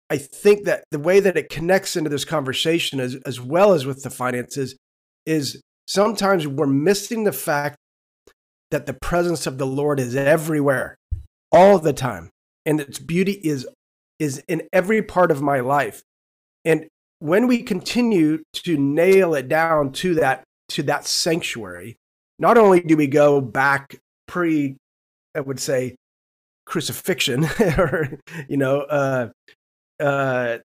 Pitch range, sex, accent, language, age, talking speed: 130-170 Hz, male, American, English, 30-49, 145 wpm